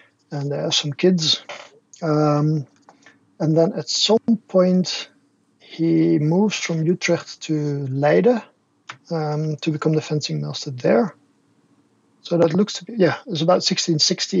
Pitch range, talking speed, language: 145-170 Hz, 140 wpm, English